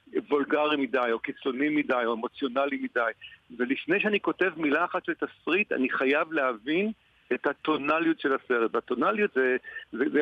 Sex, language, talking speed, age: male, Hebrew, 145 wpm, 50-69